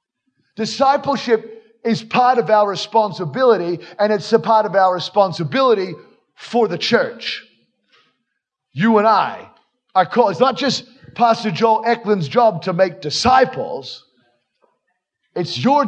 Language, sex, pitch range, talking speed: English, male, 175-225 Hz, 115 wpm